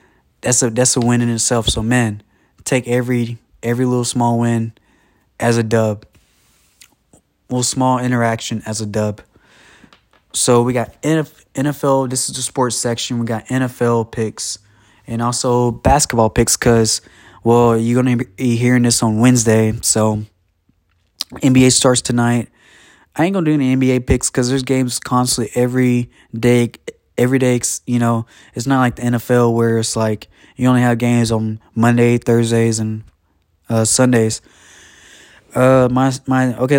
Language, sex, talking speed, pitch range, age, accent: English, male, 150 wpm, 115-130 Hz, 20-39, American